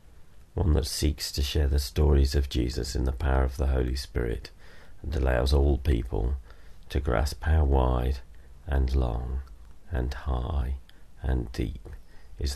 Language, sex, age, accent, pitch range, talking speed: English, male, 40-59, British, 70-85 Hz, 150 wpm